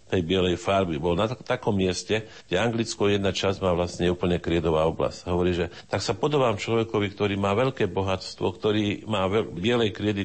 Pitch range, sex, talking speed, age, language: 95-115 Hz, male, 185 wpm, 50-69, Slovak